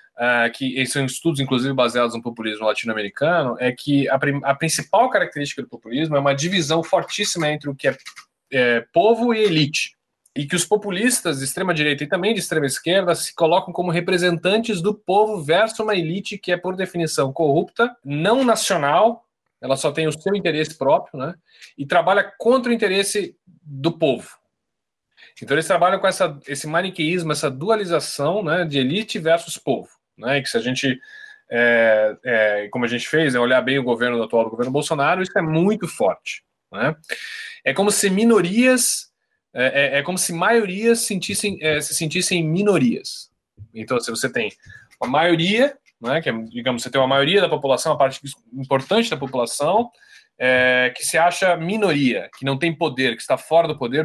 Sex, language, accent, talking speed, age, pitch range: male, Portuguese, Brazilian, 180 wpm, 20-39, 135-200 Hz